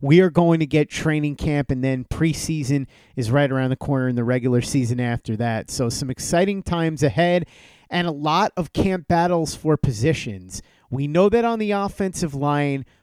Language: English